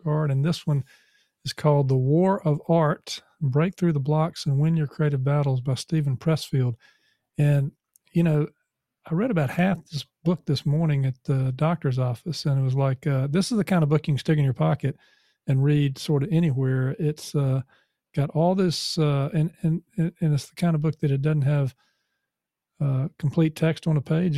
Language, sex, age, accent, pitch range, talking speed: English, male, 40-59, American, 135-155 Hz, 200 wpm